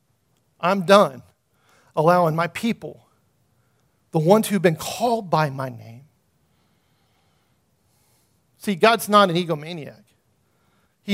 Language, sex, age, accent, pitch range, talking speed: English, male, 40-59, American, 155-215 Hz, 110 wpm